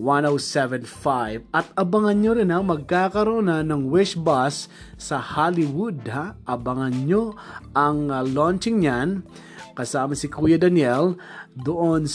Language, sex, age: Filipino, male, 20-39